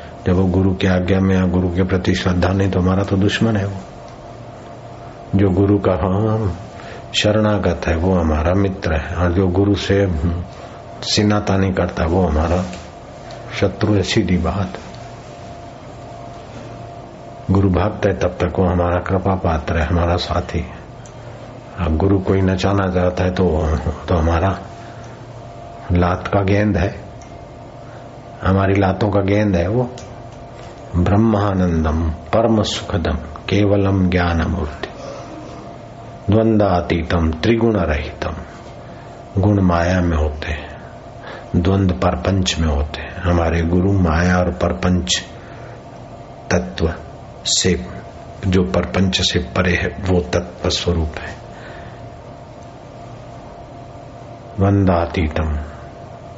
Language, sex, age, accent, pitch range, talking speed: Hindi, male, 60-79, native, 85-105 Hz, 110 wpm